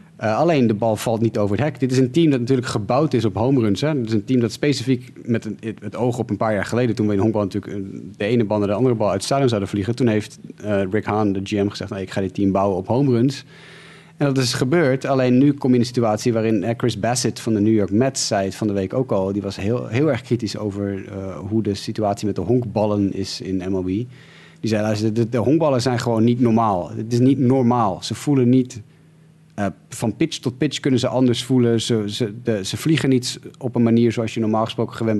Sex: male